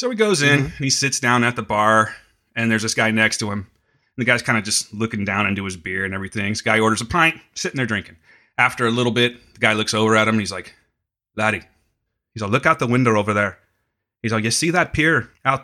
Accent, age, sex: American, 30-49, male